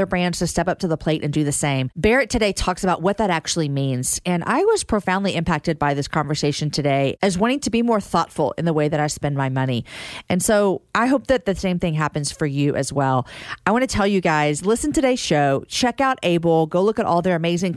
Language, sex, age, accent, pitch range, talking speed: English, female, 40-59, American, 155-210 Hz, 250 wpm